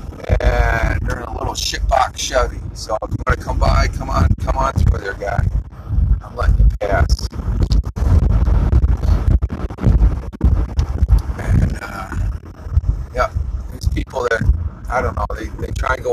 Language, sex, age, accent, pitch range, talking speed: English, male, 40-59, American, 80-100 Hz, 145 wpm